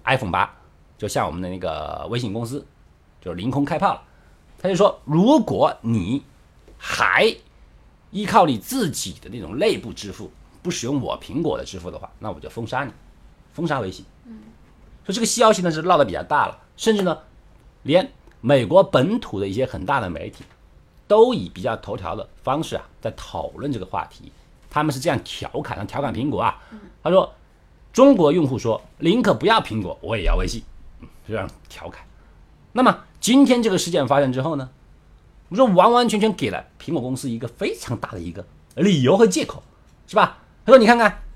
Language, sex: Chinese, male